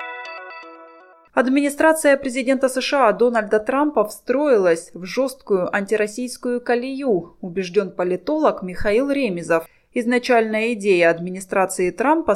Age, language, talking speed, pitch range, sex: 20-39, Russian, 85 wpm, 180-250 Hz, female